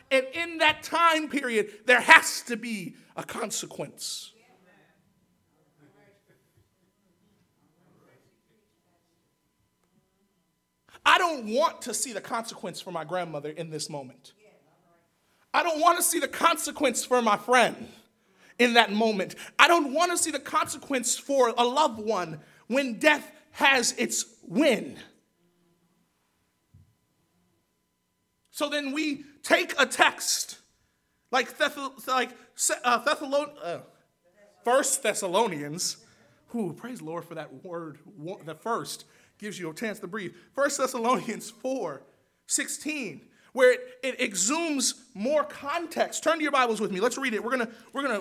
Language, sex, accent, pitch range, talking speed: English, male, American, 180-275 Hz, 135 wpm